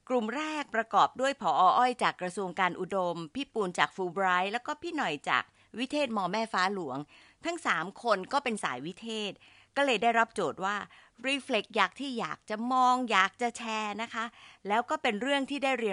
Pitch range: 170-240 Hz